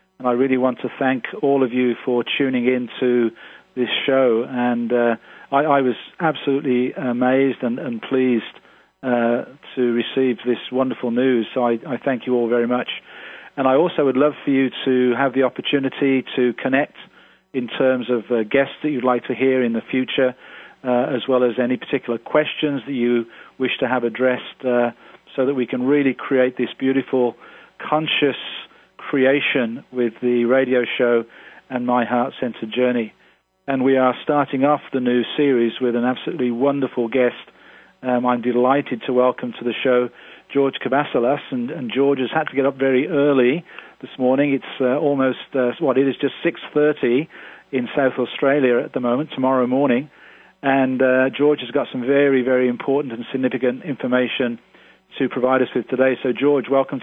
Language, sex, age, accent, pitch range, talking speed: English, male, 40-59, British, 125-135 Hz, 180 wpm